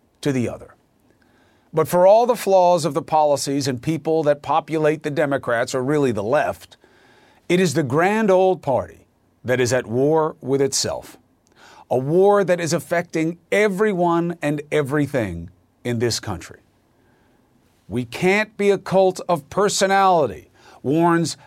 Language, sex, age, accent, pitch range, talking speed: English, male, 50-69, American, 130-190 Hz, 145 wpm